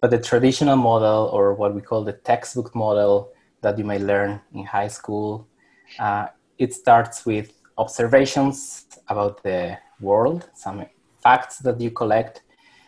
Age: 20-39